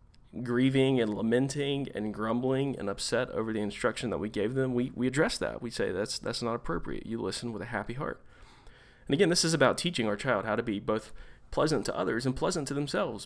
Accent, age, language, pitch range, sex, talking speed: American, 30-49, English, 110-135 Hz, male, 220 wpm